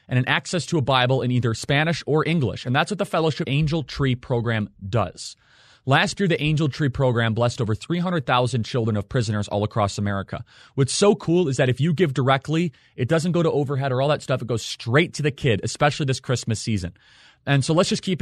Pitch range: 115-145 Hz